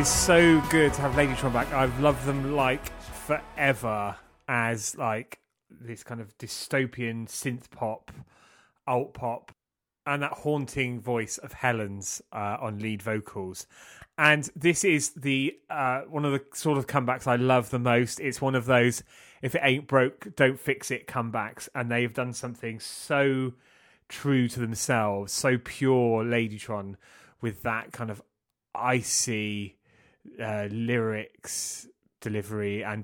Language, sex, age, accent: English, male, 30-49, British